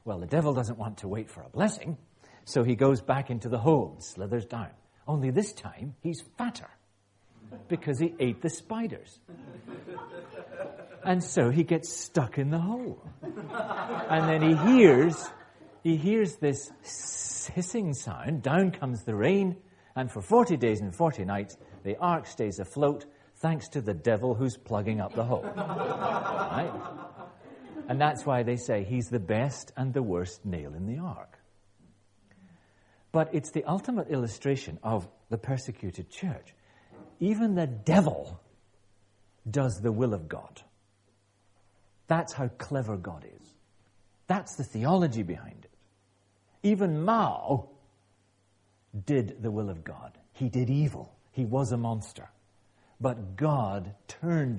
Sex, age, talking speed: male, 40-59, 145 wpm